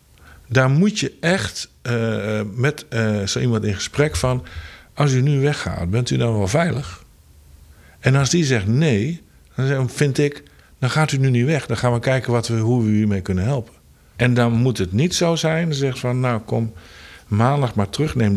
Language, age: Dutch, 50-69